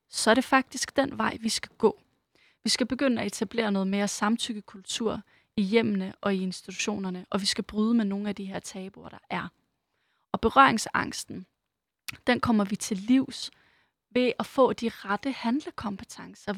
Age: 30-49